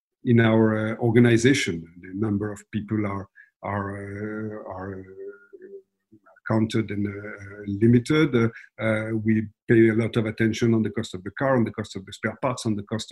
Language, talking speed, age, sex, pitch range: English, 185 wpm, 50-69, male, 110-135 Hz